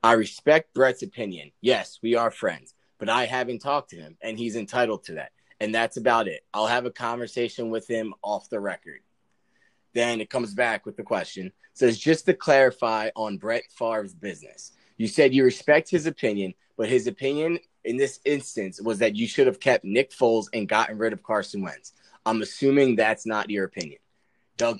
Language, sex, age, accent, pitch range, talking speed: English, male, 20-39, American, 110-135 Hz, 195 wpm